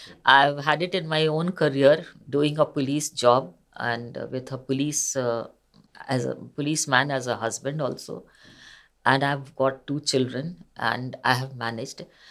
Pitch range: 135-175 Hz